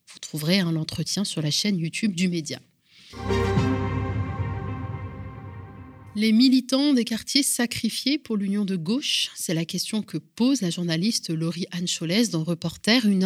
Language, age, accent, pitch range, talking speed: French, 30-49, French, 175-235 Hz, 145 wpm